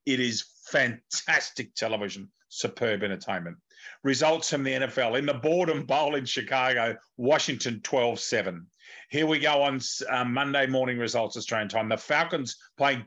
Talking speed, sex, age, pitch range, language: 140 wpm, male, 40-59, 115-150 Hz, English